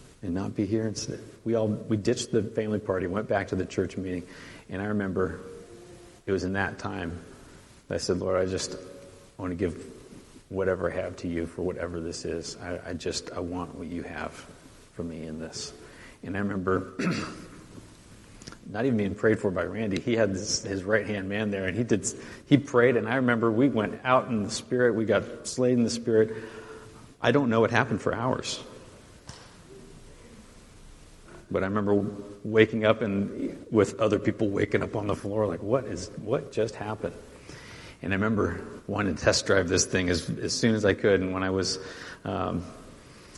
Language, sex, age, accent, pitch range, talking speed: English, male, 40-59, American, 90-110 Hz, 195 wpm